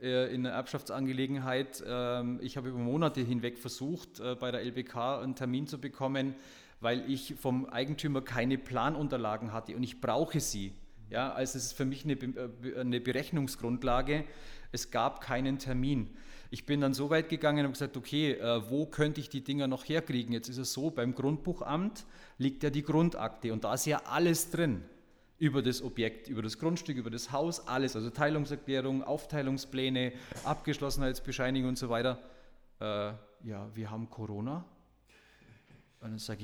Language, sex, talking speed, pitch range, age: German, male, 160 wpm, 125-145 Hz, 40-59